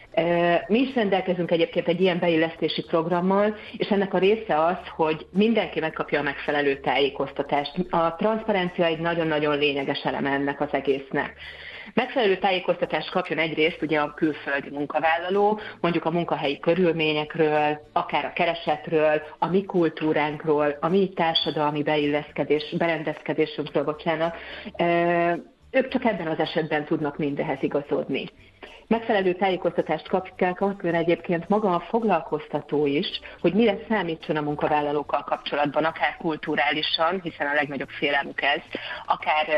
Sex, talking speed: female, 125 wpm